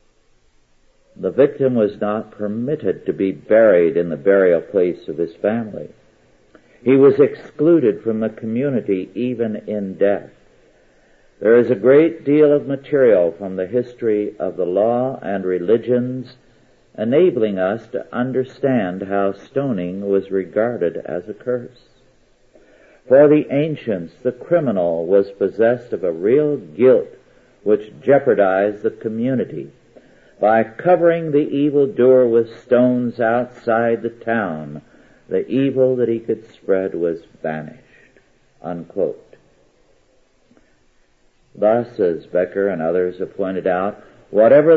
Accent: American